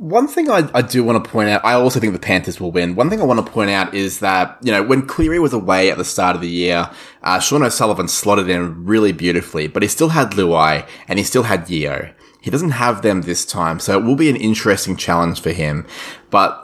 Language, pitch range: English, 90-120 Hz